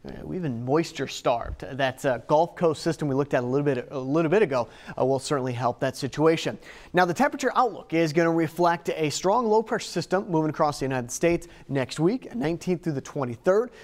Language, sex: English, male